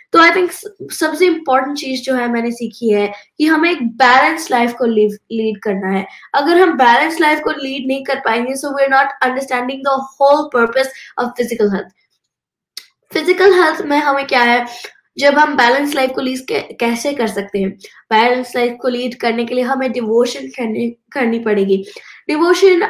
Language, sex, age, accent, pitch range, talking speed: Hindi, female, 20-39, native, 235-285 Hz, 175 wpm